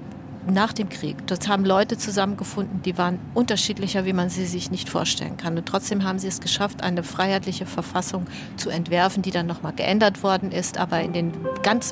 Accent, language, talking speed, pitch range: German, German, 190 wpm, 175-205 Hz